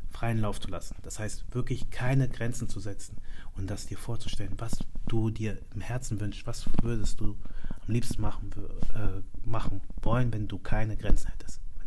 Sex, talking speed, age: male, 185 wpm, 30-49